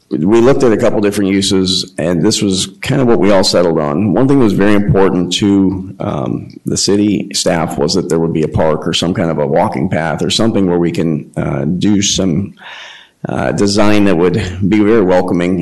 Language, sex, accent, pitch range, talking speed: English, male, American, 90-100 Hz, 220 wpm